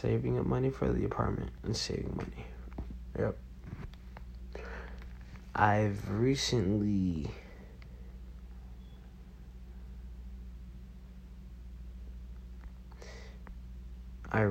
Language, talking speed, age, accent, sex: English, 55 wpm, 30-49, American, male